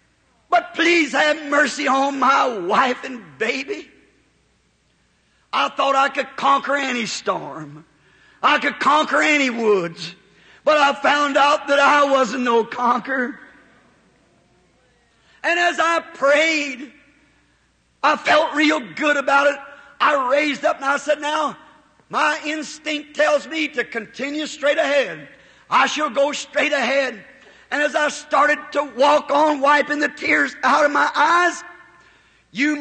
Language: English